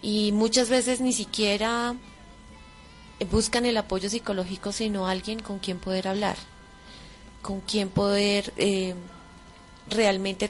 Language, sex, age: Spanish, female, 20-39